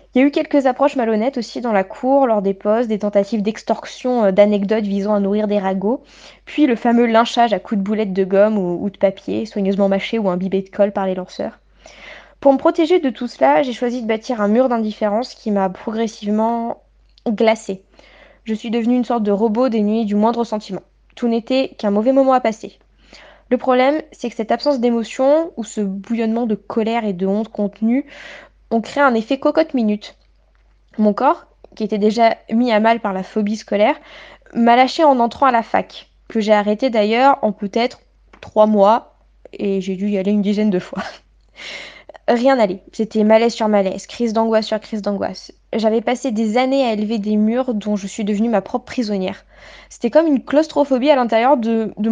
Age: 20-39